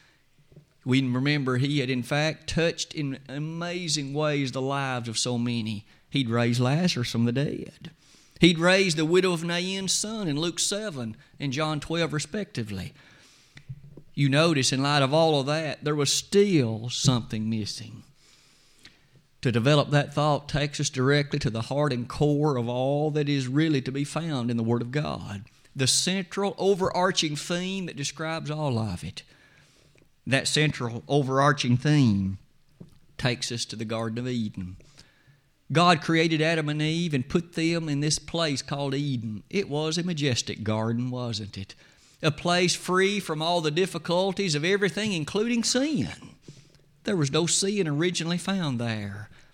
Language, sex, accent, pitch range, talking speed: English, male, American, 130-170 Hz, 160 wpm